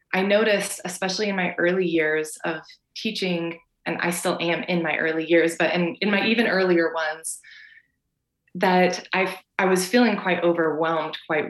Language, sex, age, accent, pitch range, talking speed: English, female, 20-39, American, 165-200 Hz, 165 wpm